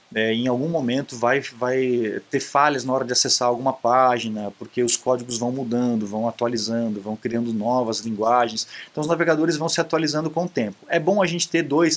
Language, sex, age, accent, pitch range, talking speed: Portuguese, male, 20-39, Brazilian, 120-165 Hz, 195 wpm